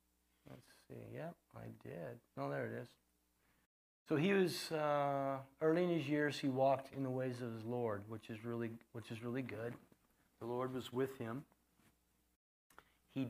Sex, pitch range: male, 110-135 Hz